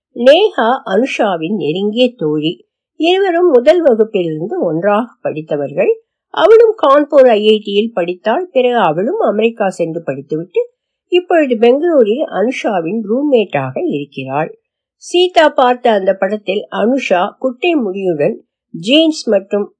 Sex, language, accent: female, Tamil, native